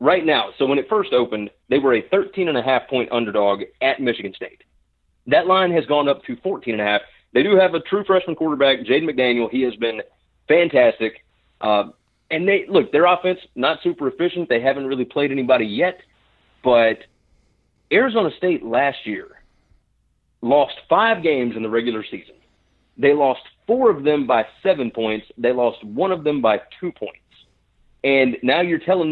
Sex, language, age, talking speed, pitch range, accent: male, English, 40-59, 170 wpm, 120-180 Hz, American